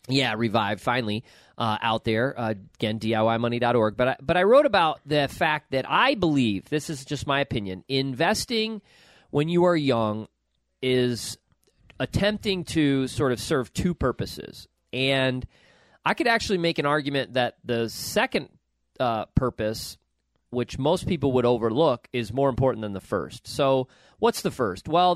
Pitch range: 120-160 Hz